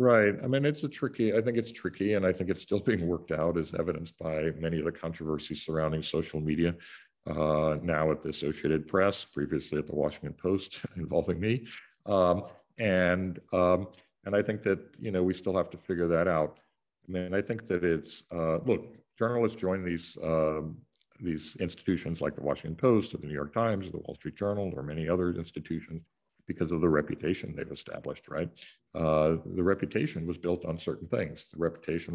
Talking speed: 200 wpm